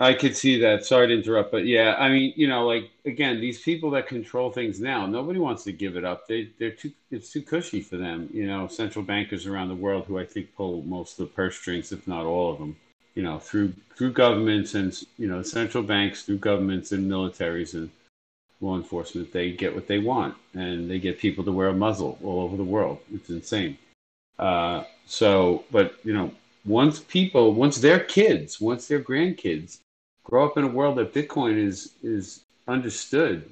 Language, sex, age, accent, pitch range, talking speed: English, male, 50-69, American, 95-125 Hz, 205 wpm